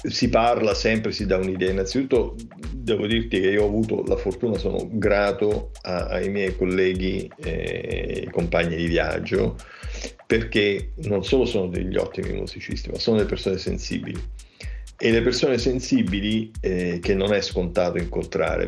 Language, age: Italian, 50-69